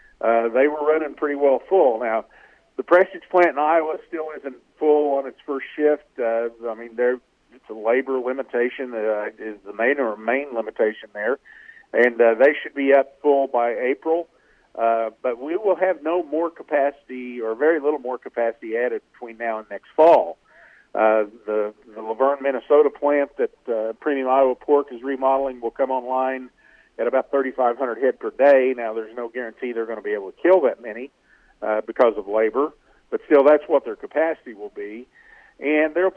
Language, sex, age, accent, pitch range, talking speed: English, male, 50-69, American, 120-155 Hz, 185 wpm